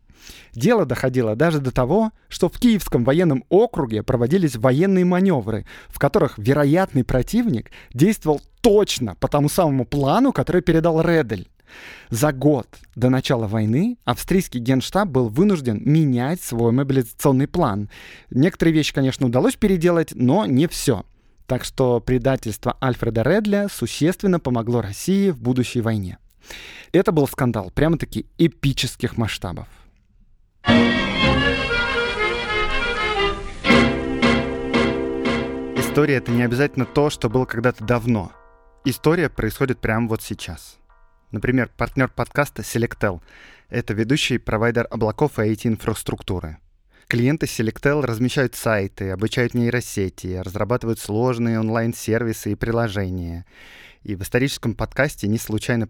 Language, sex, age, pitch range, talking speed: Russian, male, 20-39, 110-145 Hz, 115 wpm